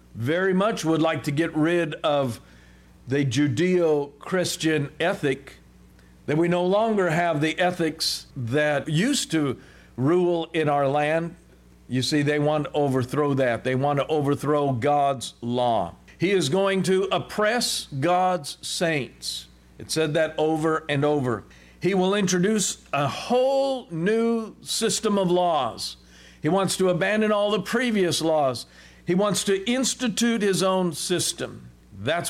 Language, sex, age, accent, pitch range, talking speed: English, male, 50-69, American, 140-180 Hz, 145 wpm